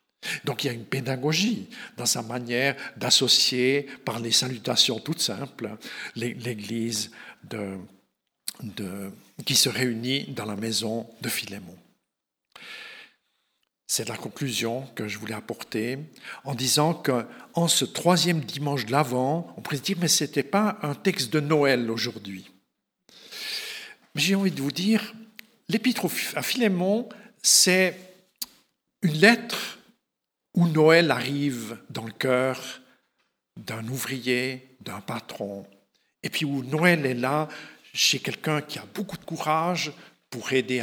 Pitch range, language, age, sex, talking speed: 125-175 Hz, French, 60-79, male, 130 wpm